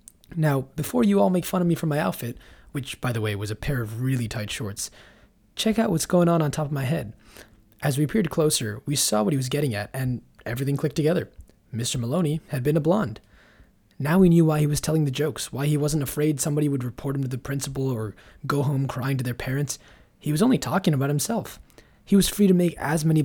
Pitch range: 125-165 Hz